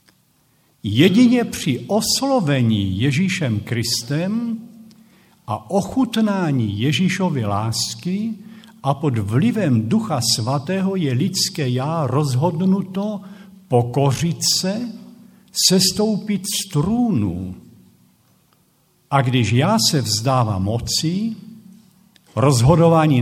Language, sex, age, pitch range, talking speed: Slovak, male, 70-89, 125-200 Hz, 80 wpm